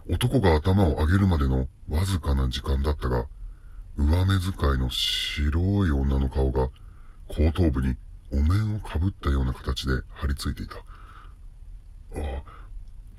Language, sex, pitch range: Japanese, female, 70-95 Hz